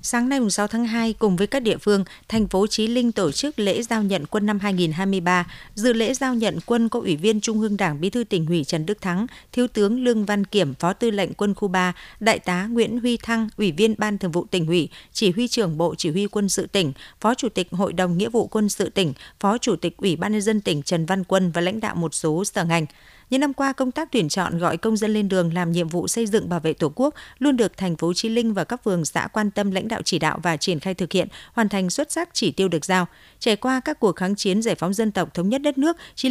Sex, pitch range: female, 180-225 Hz